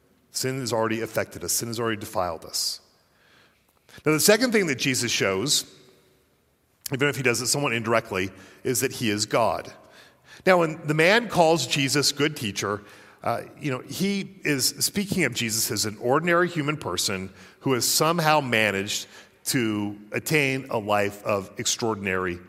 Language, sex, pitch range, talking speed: English, male, 115-155 Hz, 160 wpm